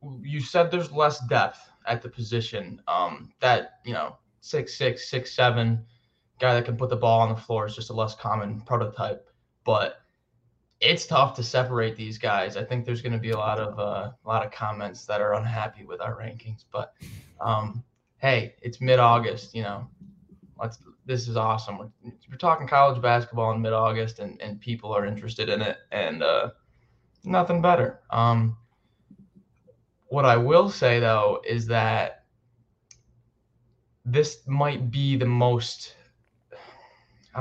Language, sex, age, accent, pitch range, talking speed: English, male, 20-39, American, 115-125 Hz, 165 wpm